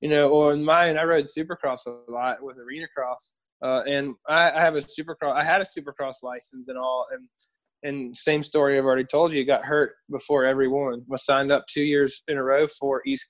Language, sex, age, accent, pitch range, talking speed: English, male, 20-39, American, 140-170 Hz, 225 wpm